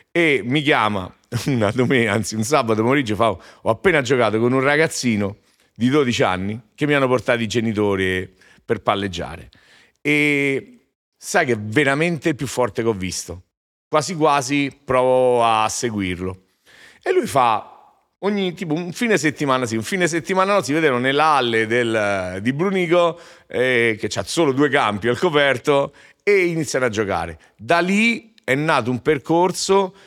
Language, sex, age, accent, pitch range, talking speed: Italian, male, 40-59, native, 110-160 Hz, 155 wpm